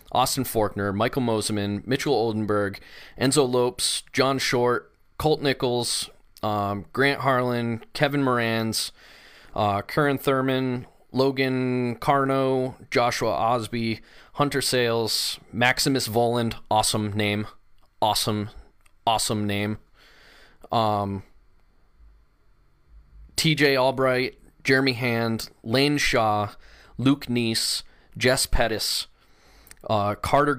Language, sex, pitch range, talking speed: English, male, 105-125 Hz, 90 wpm